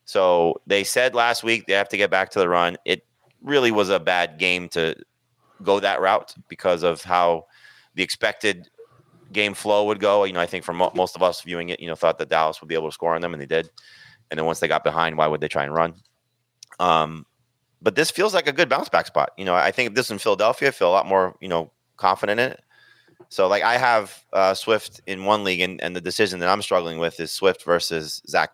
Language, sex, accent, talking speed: English, male, American, 250 wpm